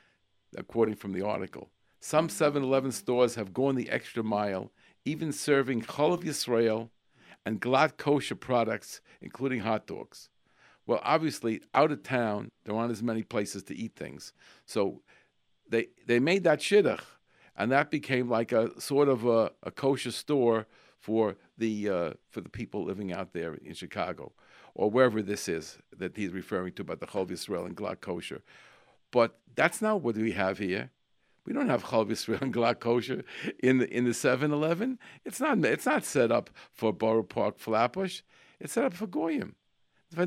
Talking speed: 175 wpm